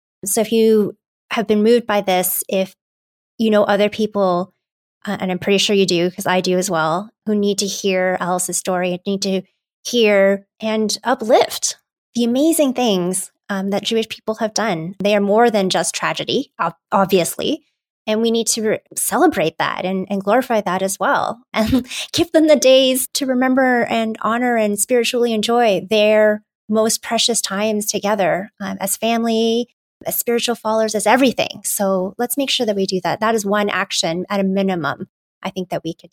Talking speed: 180 wpm